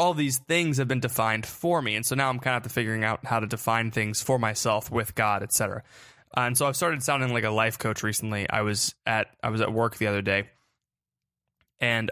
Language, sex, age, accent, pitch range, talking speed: English, male, 20-39, American, 110-130 Hz, 235 wpm